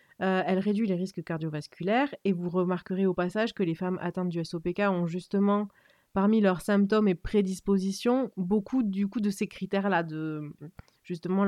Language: French